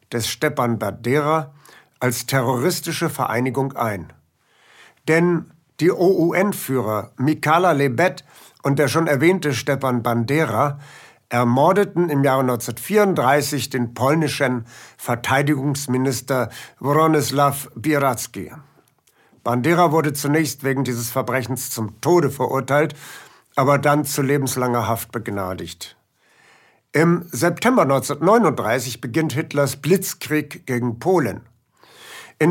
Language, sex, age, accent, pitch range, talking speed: German, male, 60-79, German, 125-160 Hz, 90 wpm